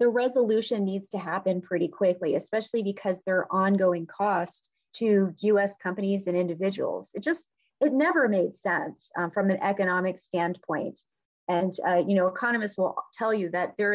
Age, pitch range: 30-49, 185-215 Hz